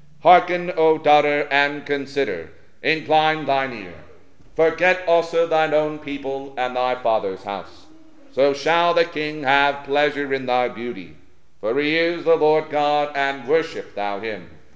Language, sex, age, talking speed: English, male, 50-69, 145 wpm